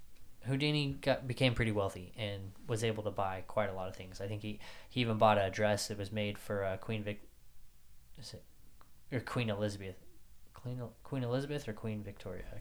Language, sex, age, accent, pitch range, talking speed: English, male, 20-39, American, 100-115 Hz, 195 wpm